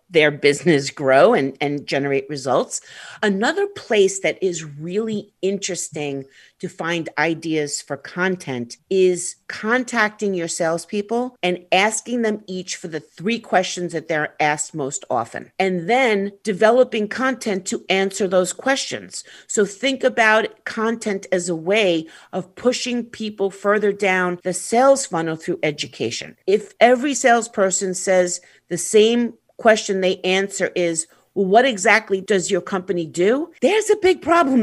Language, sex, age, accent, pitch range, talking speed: English, female, 50-69, American, 170-225 Hz, 140 wpm